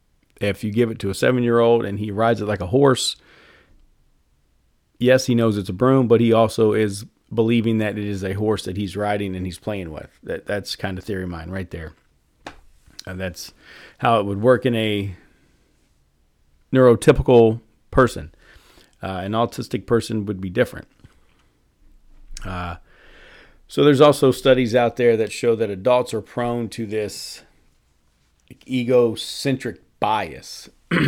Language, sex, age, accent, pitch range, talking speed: English, male, 40-59, American, 95-115 Hz, 155 wpm